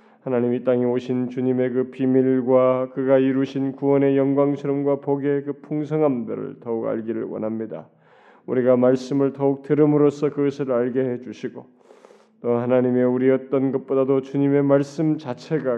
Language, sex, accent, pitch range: Korean, male, native, 120-140 Hz